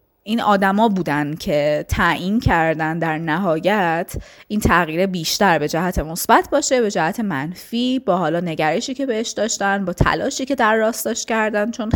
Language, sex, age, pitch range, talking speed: Persian, female, 20-39, 165-210 Hz, 160 wpm